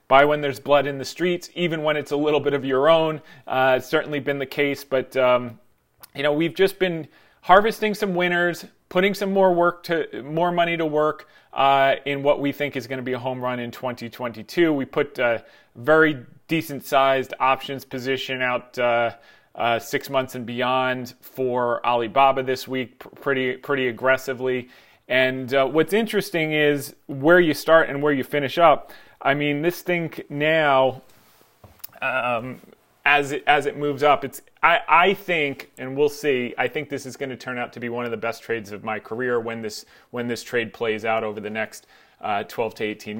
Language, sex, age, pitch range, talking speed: English, male, 30-49, 125-155 Hz, 195 wpm